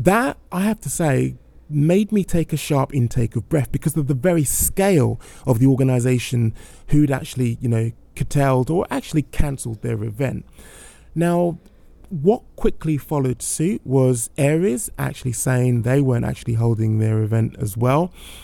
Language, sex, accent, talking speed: English, male, British, 155 wpm